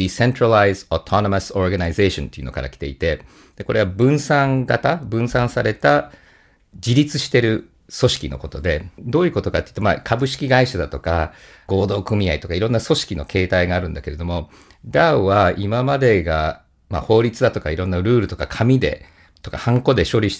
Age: 50-69